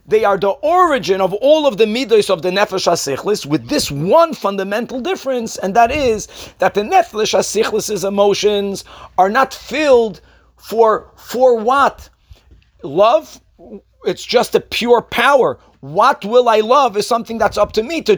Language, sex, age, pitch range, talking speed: English, male, 40-59, 185-255 Hz, 160 wpm